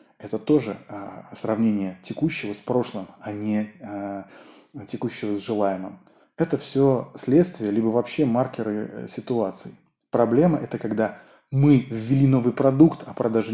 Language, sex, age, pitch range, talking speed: Russian, male, 20-39, 105-130 Hz, 120 wpm